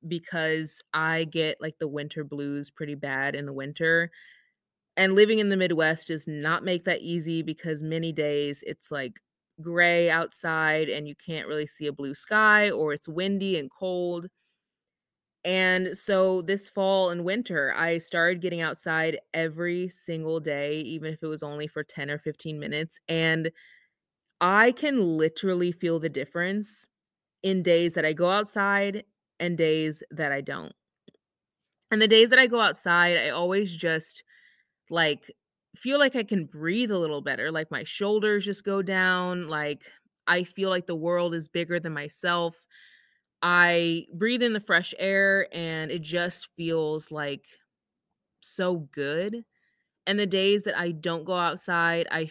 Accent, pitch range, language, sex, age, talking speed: American, 155-190 Hz, English, female, 20-39, 160 wpm